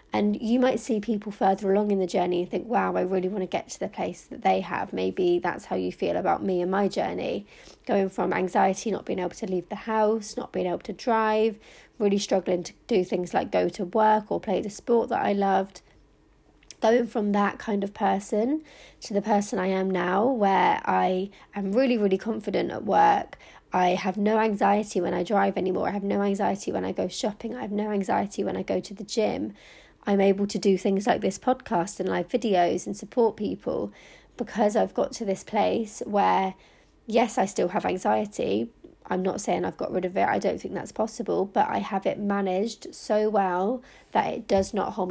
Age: 30-49